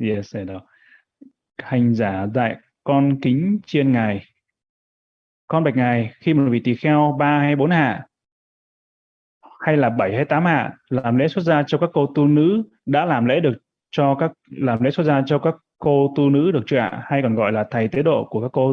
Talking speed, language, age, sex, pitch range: 200 wpm, Vietnamese, 20-39, male, 120-145 Hz